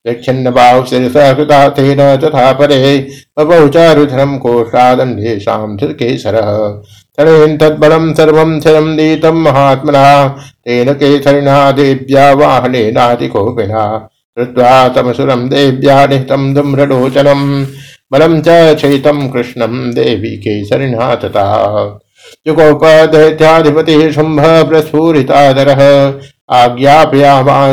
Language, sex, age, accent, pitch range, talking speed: Hindi, male, 60-79, native, 125-145 Hz, 65 wpm